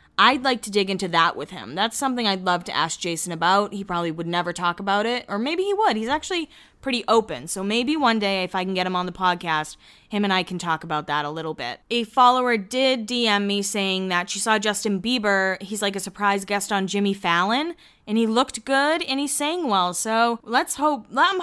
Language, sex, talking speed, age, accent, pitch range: English, female, 235 wpm, 20-39, American, 195-270 Hz